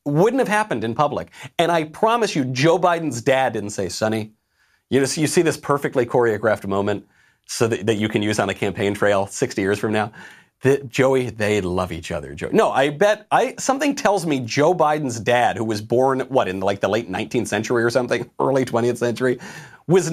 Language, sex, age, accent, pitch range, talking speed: English, male, 40-59, American, 100-135 Hz, 210 wpm